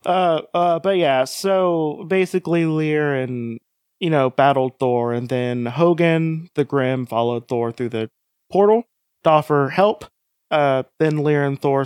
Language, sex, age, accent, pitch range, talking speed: English, male, 30-49, American, 125-165 Hz, 150 wpm